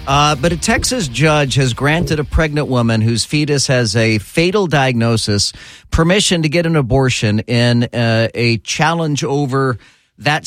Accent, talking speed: American, 155 wpm